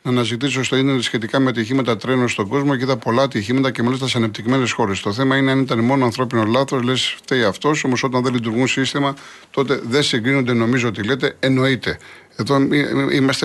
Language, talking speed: Greek, 195 wpm